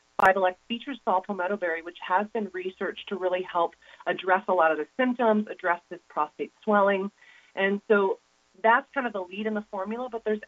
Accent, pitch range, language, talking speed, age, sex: American, 180-220 Hz, English, 195 wpm, 30-49, female